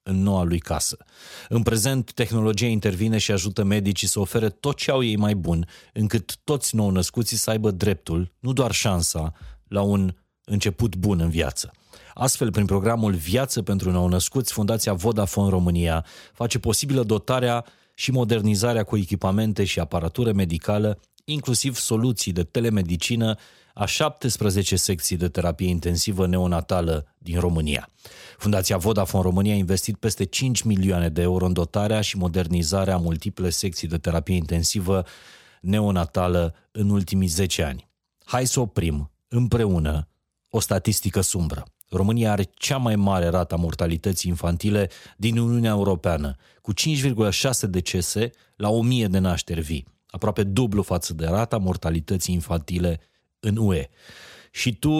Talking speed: 140 wpm